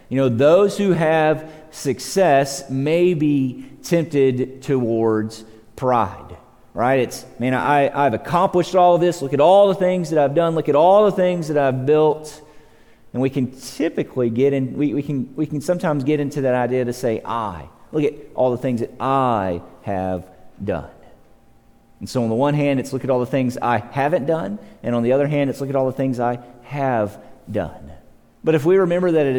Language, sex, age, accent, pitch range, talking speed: English, male, 40-59, American, 120-150 Hz, 205 wpm